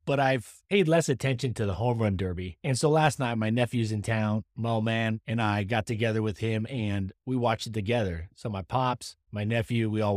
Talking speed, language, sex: 225 wpm, English, male